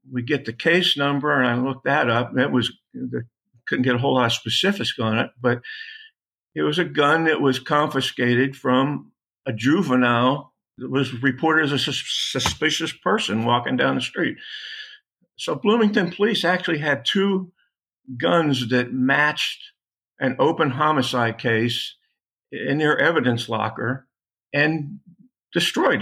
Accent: American